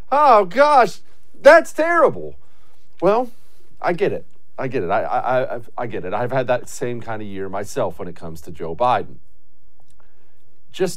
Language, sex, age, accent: English, male, 40-59, American